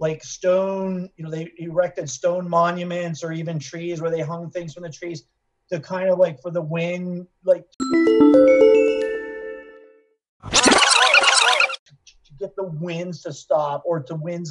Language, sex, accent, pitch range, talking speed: English, male, American, 150-185 Hz, 145 wpm